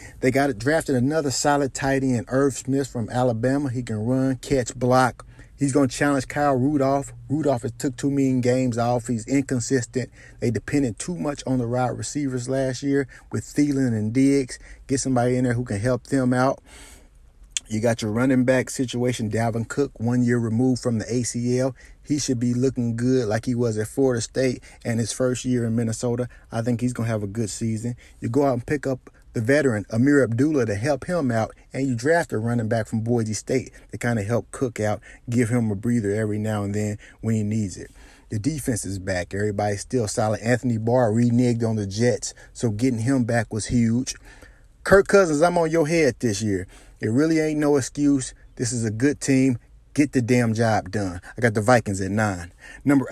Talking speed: 210 wpm